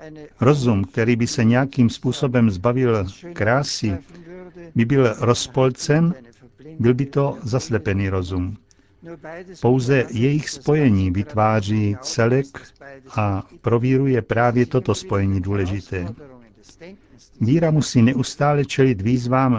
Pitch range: 105-135 Hz